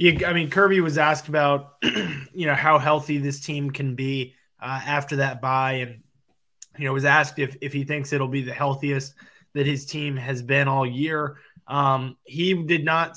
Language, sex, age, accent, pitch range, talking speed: English, male, 20-39, American, 130-145 Hz, 190 wpm